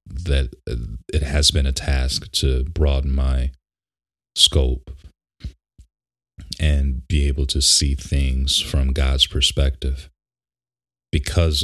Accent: American